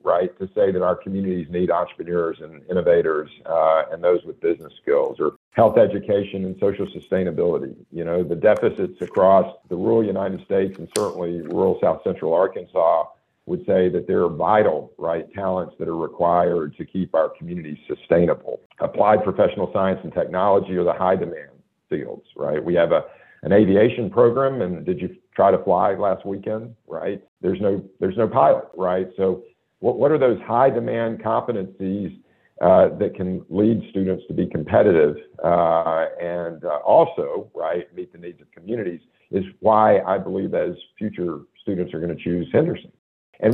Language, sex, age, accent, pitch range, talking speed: English, male, 50-69, American, 90-110 Hz, 170 wpm